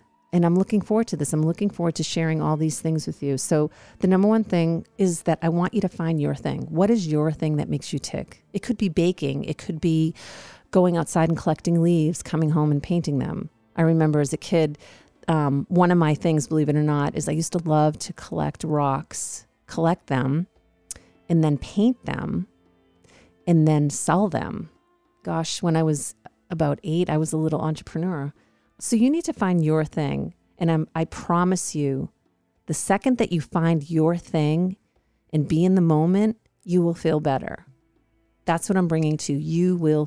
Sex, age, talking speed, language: female, 40-59, 200 wpm, English